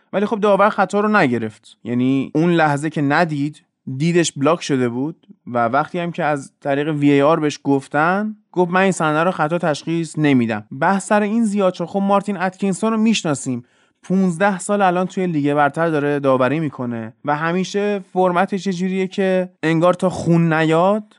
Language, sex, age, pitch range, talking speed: Persian, male, 20-39, 140-185 Hz, 170 wpm